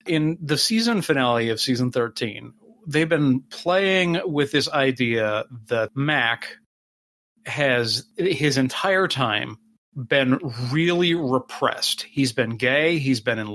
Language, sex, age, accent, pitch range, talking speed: English, male, 40-59, American, 125-170 Hz, 125 wpm